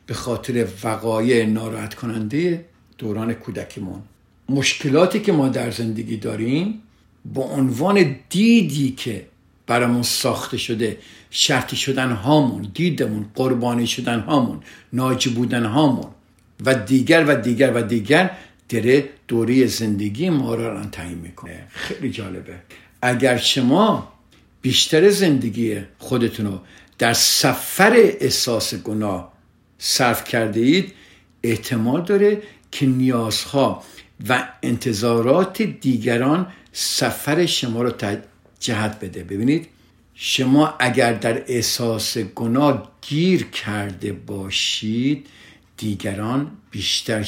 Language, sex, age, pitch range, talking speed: Persian, male, 60-79, 105-135 Hz, 105 wpm